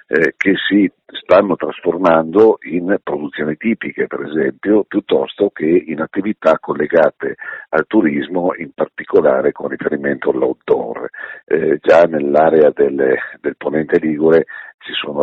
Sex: male